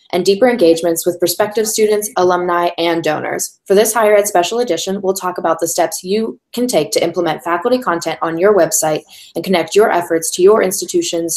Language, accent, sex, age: English, American, female, 10-29